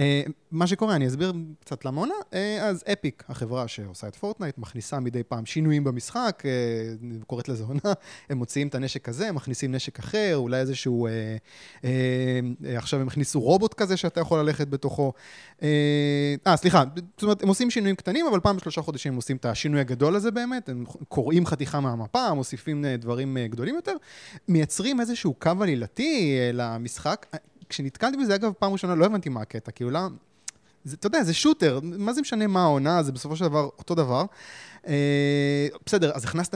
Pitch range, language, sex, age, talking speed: 130-185 Hz, Hebrew, male, 20-39, 165 wpm